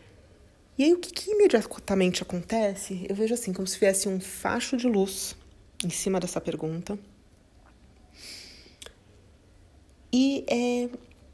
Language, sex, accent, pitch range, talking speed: Portuguese, female, Brazilian, 175-230 Hz, 110 wpm